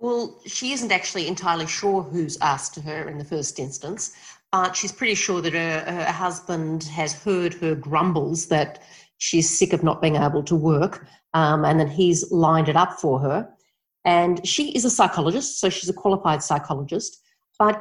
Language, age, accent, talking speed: English, 40-59, Australian, 185 wpm